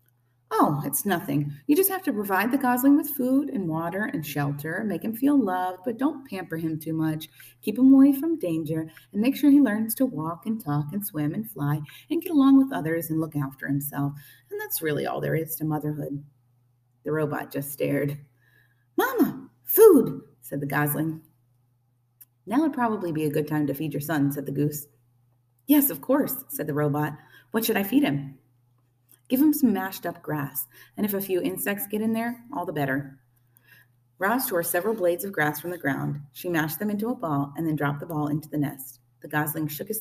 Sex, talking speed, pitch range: female, 205 wpm, 140-220 Hz